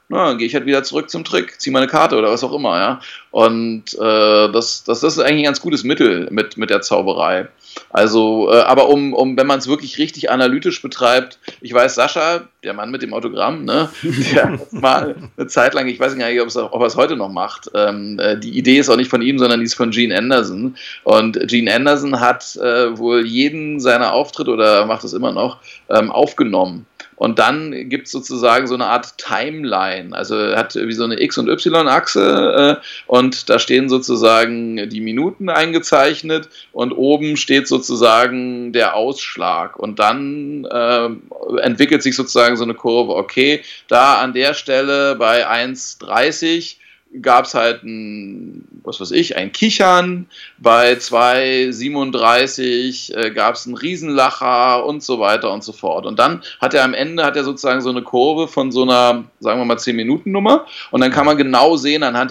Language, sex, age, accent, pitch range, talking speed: German, male, 30-49, German, 115-145 Hz, 185 wpm